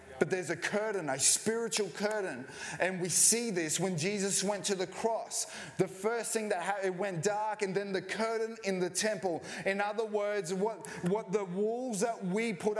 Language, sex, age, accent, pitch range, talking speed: English, male, 20-39, Australian, 170-210 Hz, 195 wpm